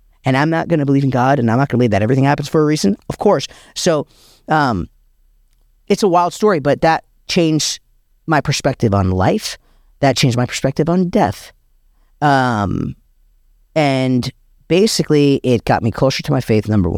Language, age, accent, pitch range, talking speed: English, 40-59, American, 95-135 Hz, 185 wpm